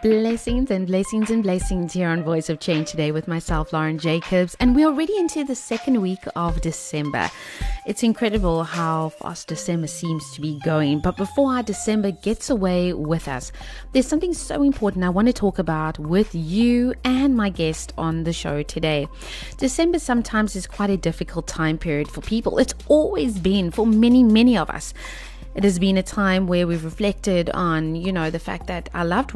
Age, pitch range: 30-49, 165-220 Hz